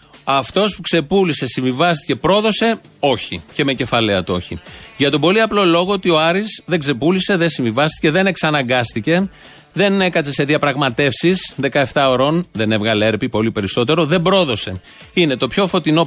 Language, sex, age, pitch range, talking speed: Greek, male, 30-49, 135-175 Hz, 155 wpm